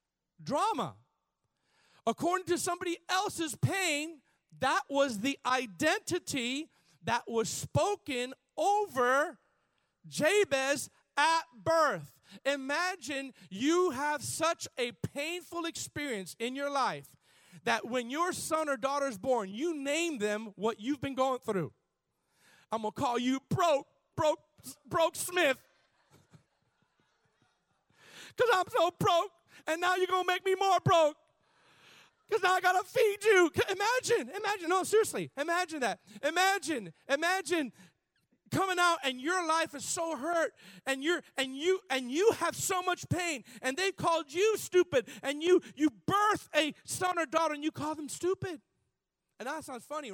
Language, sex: English, male